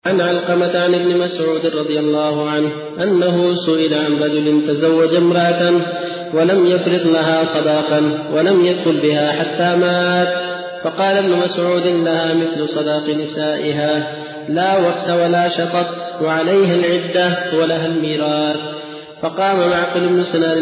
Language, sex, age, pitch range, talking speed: Arabic, male, 40-59, 155-180 Hz, 120 wpm